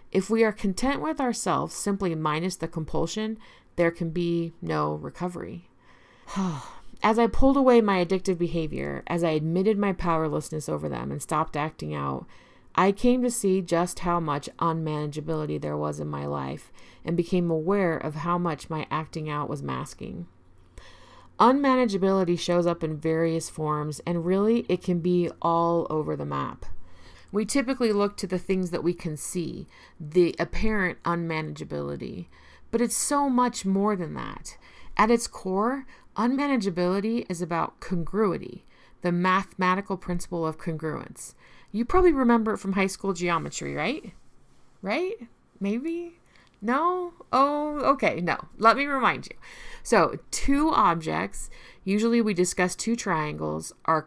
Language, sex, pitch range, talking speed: English, female, 160-220 Hz, 145 wpm